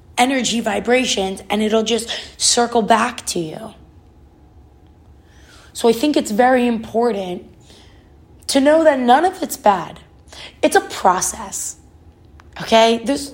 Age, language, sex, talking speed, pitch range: 20-39, English, female, 120 wpm, 195-250 Hz